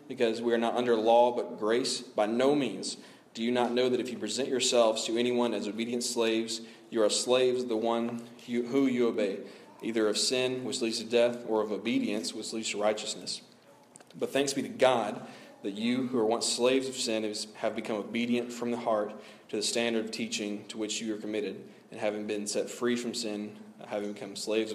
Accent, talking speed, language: American, 210 wpm, English